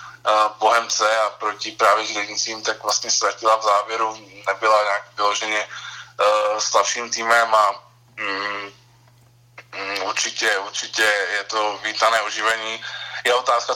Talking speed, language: 115 wpm, Czech